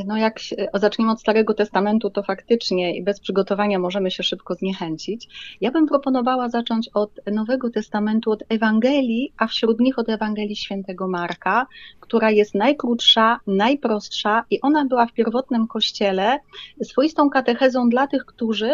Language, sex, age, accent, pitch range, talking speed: Polish, female, 30-49, native, 205-245 Hz, 145 wpm